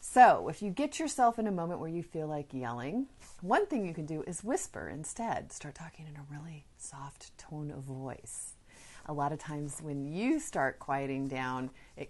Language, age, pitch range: English, 30-49, 135-170 Hz